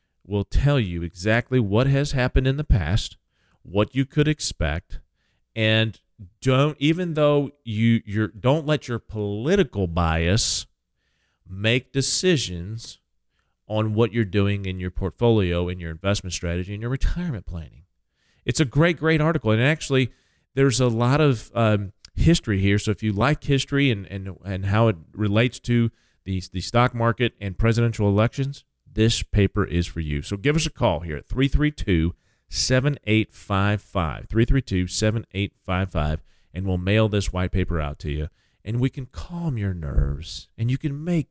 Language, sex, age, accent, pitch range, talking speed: English, male, 40-59, American, 95-120 Hz, 160 wpm